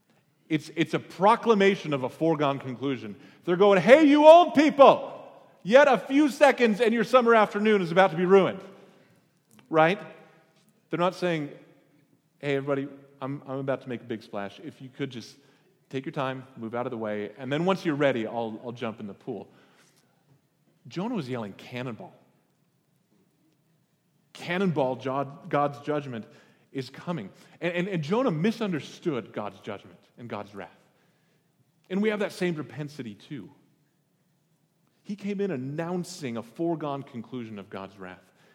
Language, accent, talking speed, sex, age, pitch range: English, American, 155 wpm, male, 30-49, 140-180 Hz